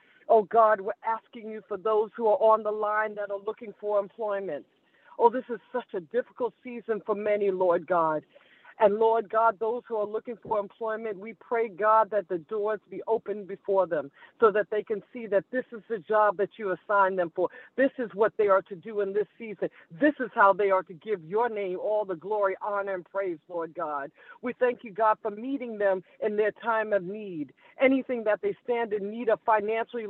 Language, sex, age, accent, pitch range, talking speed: English, female, 50-69, American, 195-230 Hz, 215 wpm